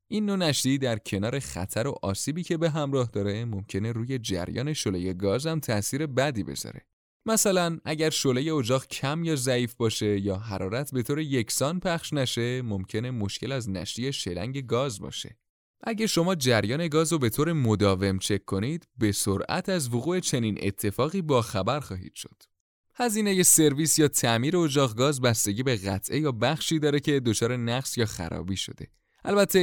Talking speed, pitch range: 170 wpm, 105-150 Hz